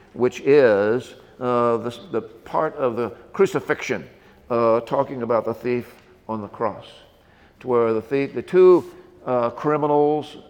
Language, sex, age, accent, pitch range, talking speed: English, male, 50-69, American, 110-130 Hz, 135 wpm